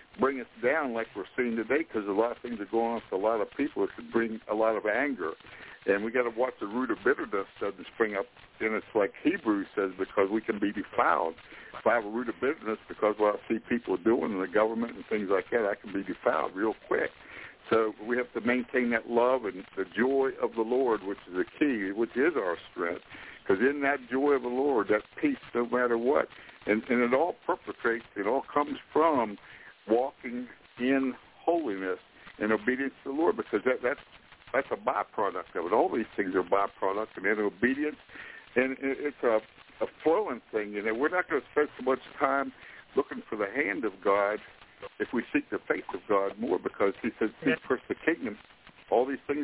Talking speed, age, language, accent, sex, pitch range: 220 wpm, 60-79, English, American, male, 110-135 Hz